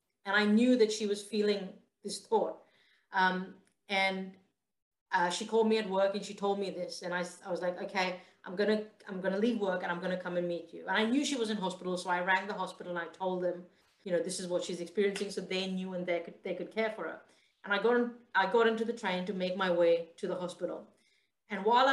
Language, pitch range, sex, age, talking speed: Hindi, 185-220 Hz, female, 30-49, 265 wpm